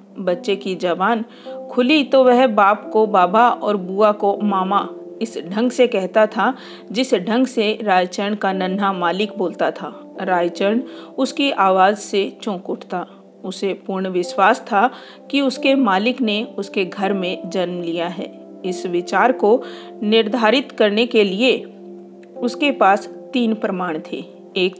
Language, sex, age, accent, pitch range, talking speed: Hindi, female, 40-59, native, 185-235 Hz, 140 wpm